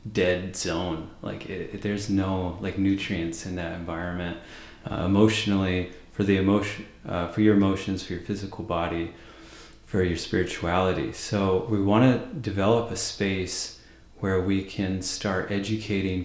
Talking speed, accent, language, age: 150 wpm, American, English, 30-49